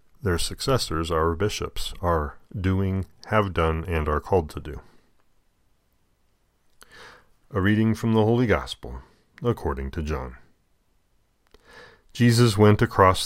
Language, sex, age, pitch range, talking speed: English, male, 40-59, 80-100 Hz, 115 wpm